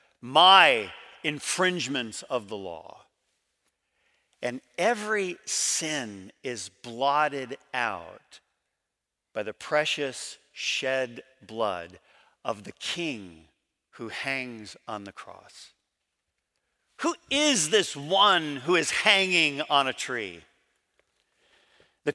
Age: 50-69